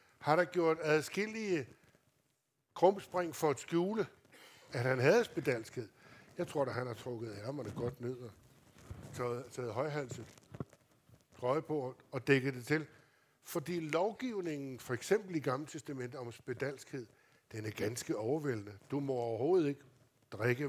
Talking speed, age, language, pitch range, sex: 140 wpm, 60-79, Danish, 130-160 Hz, male